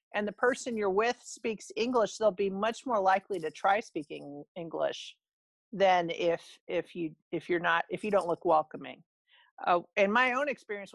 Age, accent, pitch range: 50-69, American, 185-235 Hz